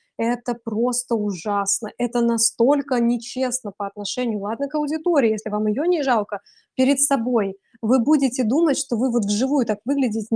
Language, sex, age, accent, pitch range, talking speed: Russian, female, 20-39, native, 225-280 Hz, 155 wpm